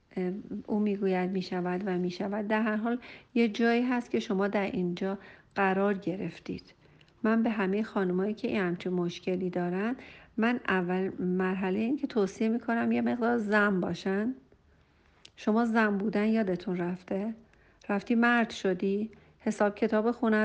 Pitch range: 190-225 Hz